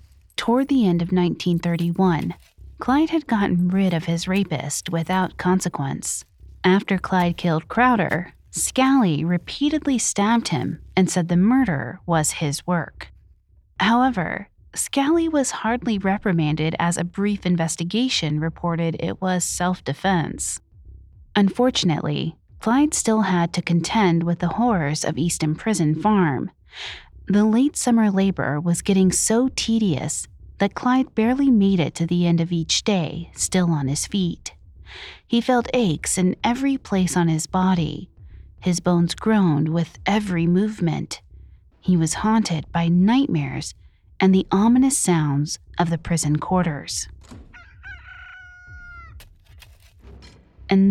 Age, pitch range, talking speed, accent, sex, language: 30-49, 160-220 Hz, 125 wpm, American, female, English